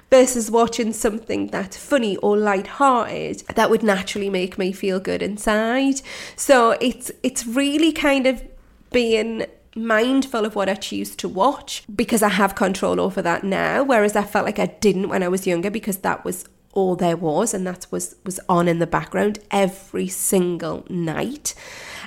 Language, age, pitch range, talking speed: English, 30-49, 190-235 Hz, 170 wpm